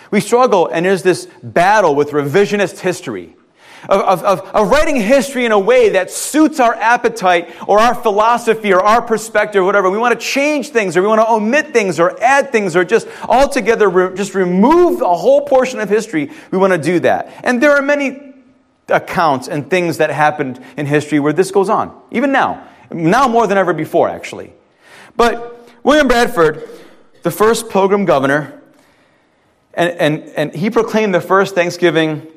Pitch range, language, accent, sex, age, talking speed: 175-240 Hz, English, American, male, 30-49, 180 wpm